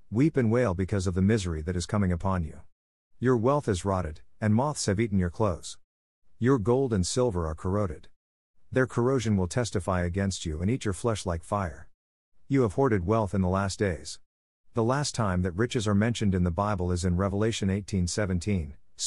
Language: English